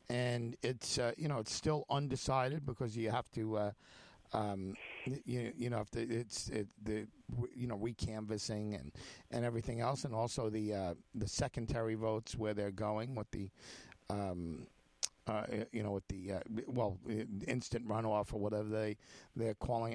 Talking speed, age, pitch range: 170 wpm, 50-69, 110-145 Hz